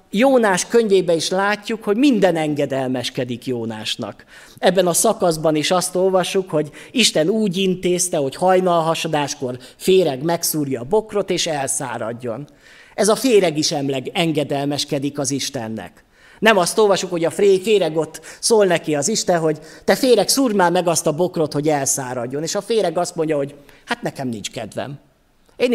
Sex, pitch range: male, 150-200 Hz